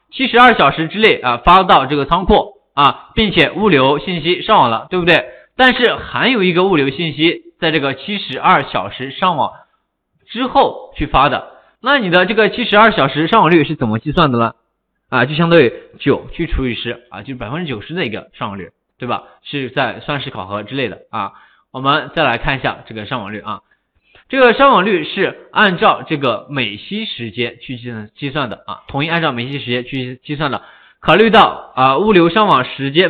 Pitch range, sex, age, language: 125-175 Hz, male, 20-39, Chinese